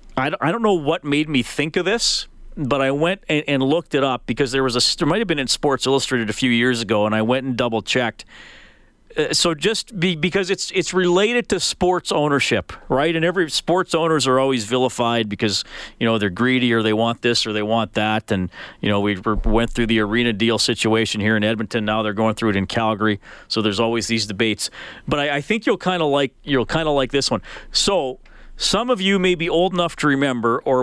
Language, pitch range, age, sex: English, 115-170 Hz, 40-59, male